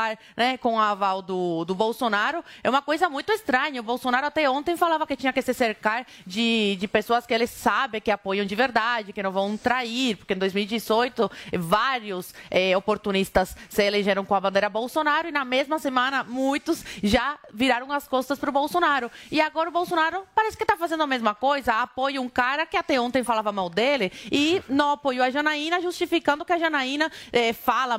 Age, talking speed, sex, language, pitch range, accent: 20-39, 195 wpm, female, Portuguese, 215-280 Hz, Brazilian